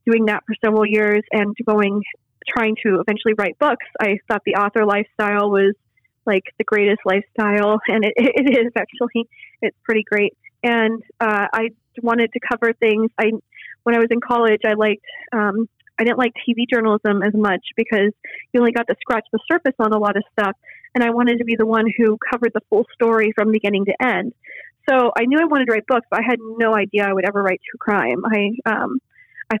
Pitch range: 205-235 Hz